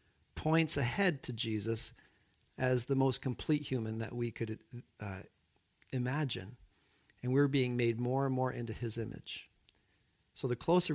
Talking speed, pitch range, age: 150 wpm, 105-135 Hz, 50-69